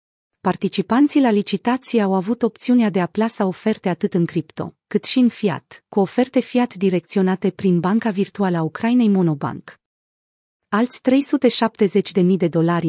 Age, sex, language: 30-49, female, Romanian